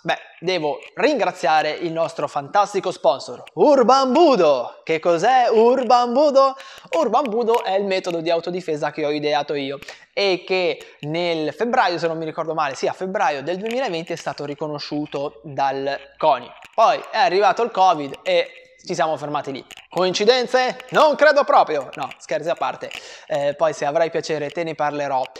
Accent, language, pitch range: native, Italian, 145-230 Hz